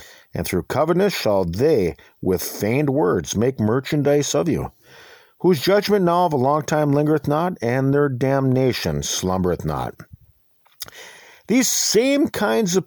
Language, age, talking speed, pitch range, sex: English, 50-69, 140 wpm, 105-175 Hz, male